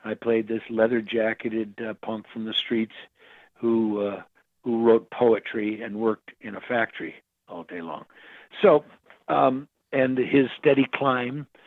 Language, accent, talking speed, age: English, American, 150 wpm, 60-79